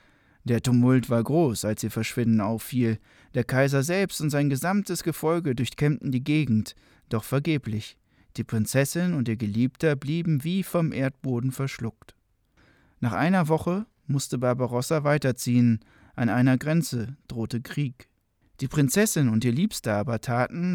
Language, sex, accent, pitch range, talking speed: German, male, German, 120-155 Hz, 140 wpm